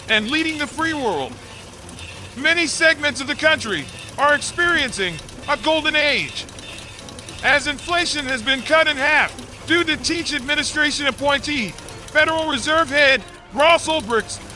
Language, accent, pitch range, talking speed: English, American, 265-330 Hz, 130 wpm